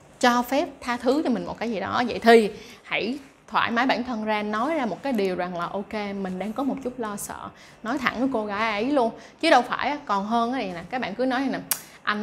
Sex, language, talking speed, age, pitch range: female, Vietnamese, 270 wpm, 20-39, 195-250 Hz